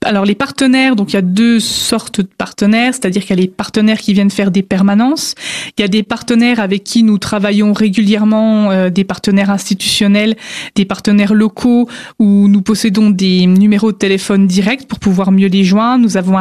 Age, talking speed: 20-39, 200 wpm